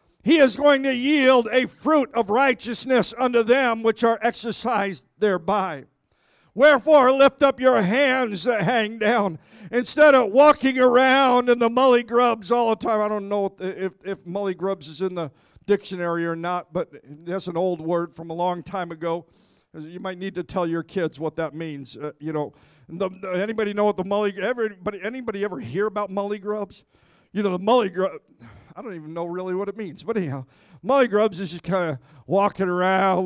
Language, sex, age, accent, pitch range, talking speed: English, male, 50-69, American, 185-230 Hz, 195 wpm